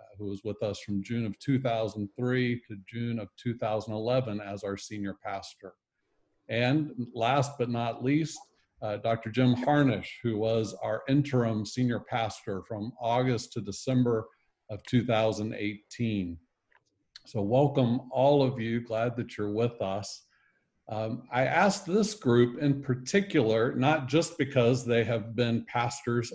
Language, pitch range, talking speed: English, 110-130 Hz, 140 wpm